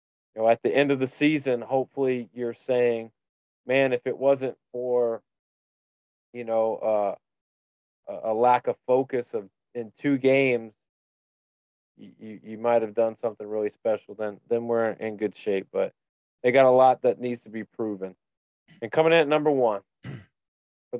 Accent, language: American, English